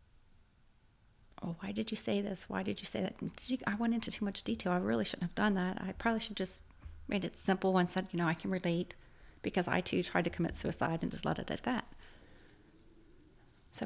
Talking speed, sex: 220 wpm, female